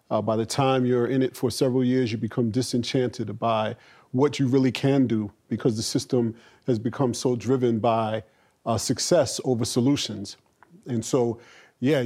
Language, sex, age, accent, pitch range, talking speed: English, male, 40-59, American, 120-135 Hz, 170 wpm